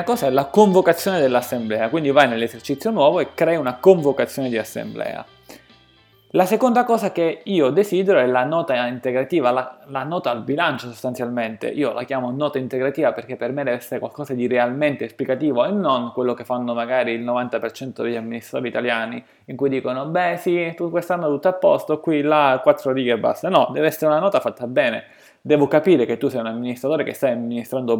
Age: 20-39